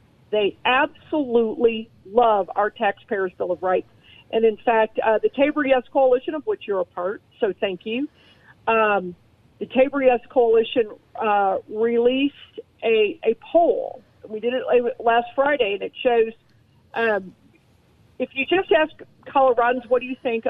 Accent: American